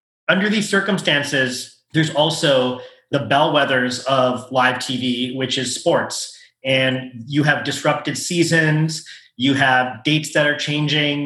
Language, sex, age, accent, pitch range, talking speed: English, male, 30-49, American, 130-155 Hz, 130 wpm